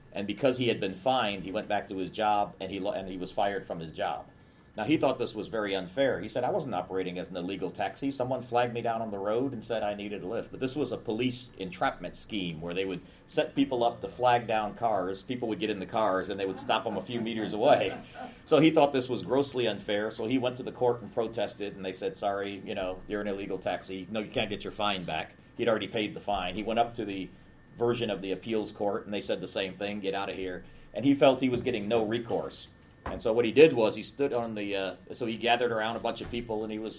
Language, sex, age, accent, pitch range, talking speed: English, male, 40-59, American, 95-120 Hz, 275 wpm